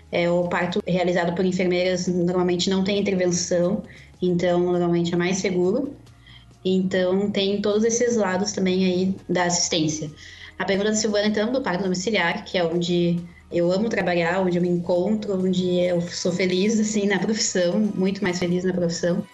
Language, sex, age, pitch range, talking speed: Portuguese, female, 20-39, 180-205 Hz, 170 wpm